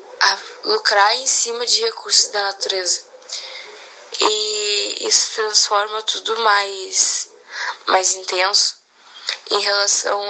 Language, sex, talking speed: Portuguese, female, 100 wpm